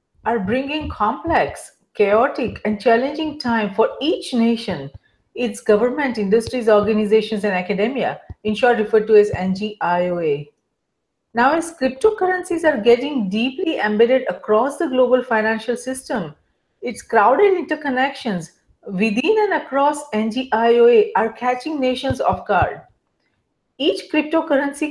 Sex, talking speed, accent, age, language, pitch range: female, 115 wpm, Indian, 40-59, English, 220-305 Hz